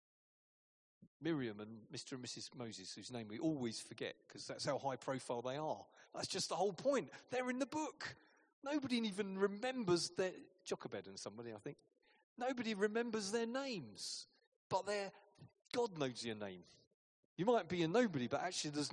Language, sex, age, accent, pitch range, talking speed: English, male, 40-59, British, 130-205 Hz, 170 wpm